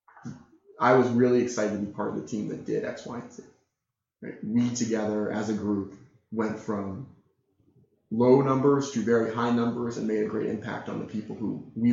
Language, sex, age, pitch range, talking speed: English, male, 20-39, 105-120 Hz, 195 wpm